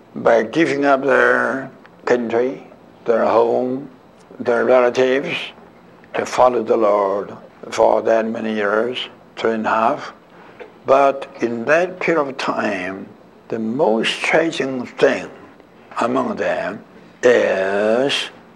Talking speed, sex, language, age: 110 wpm, male, English, 60-79